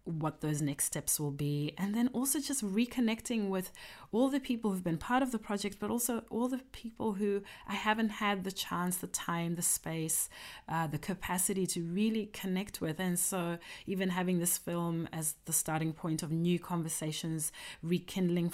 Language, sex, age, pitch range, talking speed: English, female, 30-49, 160-200 Hz, 185 wpm